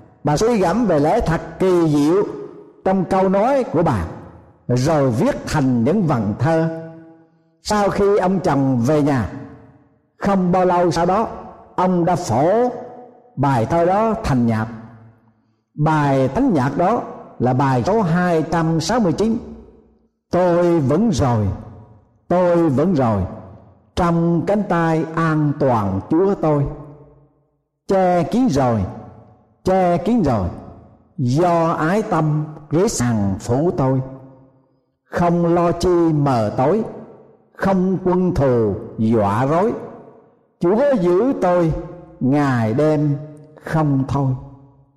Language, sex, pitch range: Thai, male, 125-175 Hz